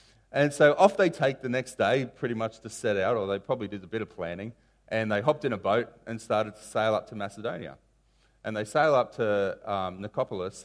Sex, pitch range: male, 110-160 Hz